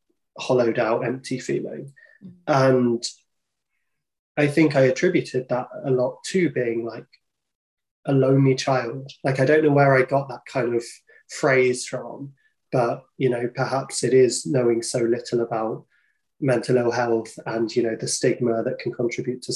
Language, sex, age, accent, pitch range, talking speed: English, male, 20-39, British, 115-135 Hz, 160 wpm